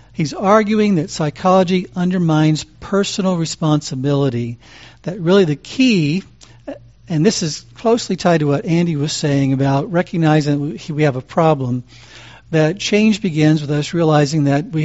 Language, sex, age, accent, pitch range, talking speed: English, male, 60-79, American, 135-160 Hz, 145 wpm